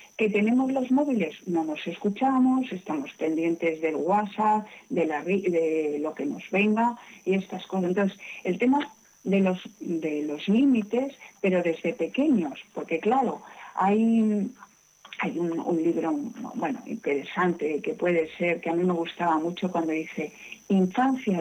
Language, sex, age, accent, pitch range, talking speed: Spanish, female, 50-69, Spanish, 170-235 Hz, 140 wpm